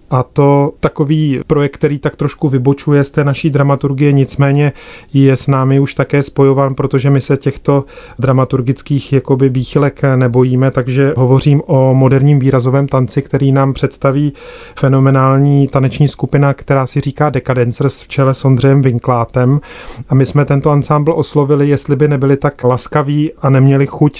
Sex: male